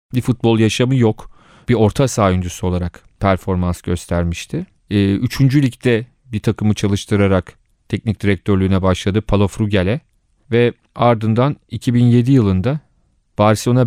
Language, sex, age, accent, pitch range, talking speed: Turkish, male, 40-59, native, 100-120 Hz, 110 wpm